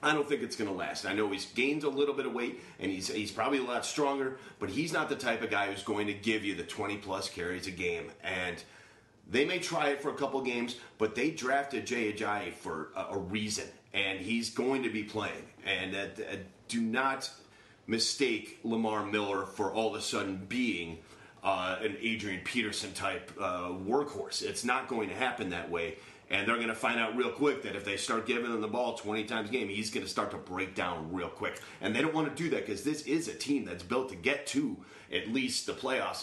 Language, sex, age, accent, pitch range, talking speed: English, male, 30-49, American, 105-140 Hz, 230 wpm